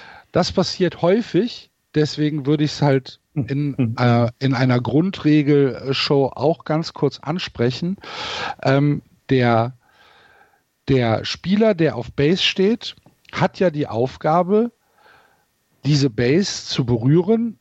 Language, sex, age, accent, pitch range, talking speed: German, male, 50-69, German, 125-175 Hz, 110 wpm